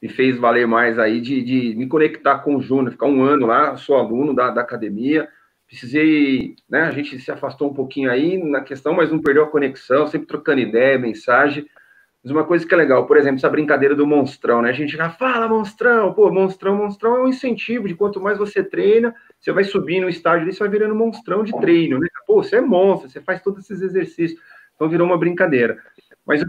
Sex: male